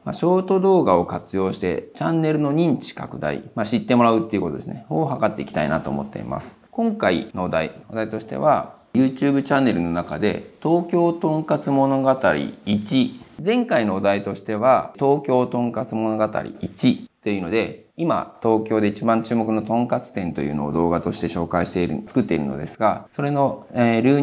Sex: male